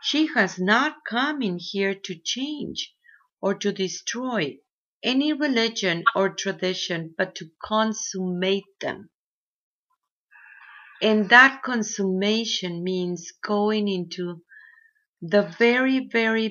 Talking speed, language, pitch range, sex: 100 wpm, English, 185-230 Hz, female